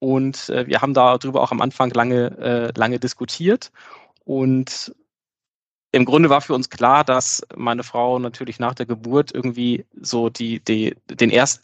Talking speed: 145 wpm